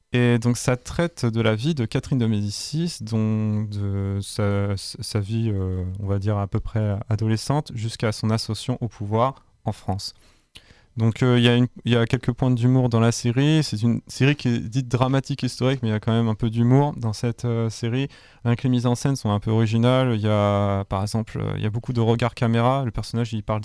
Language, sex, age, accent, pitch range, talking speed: French, male, 20-39, French, 105-125 Hz, 230 wpm